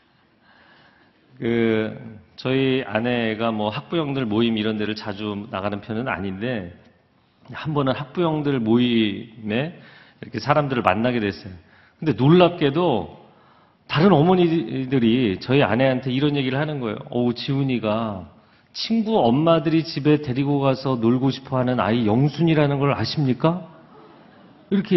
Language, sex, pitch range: Korean, male, 110-140 Hz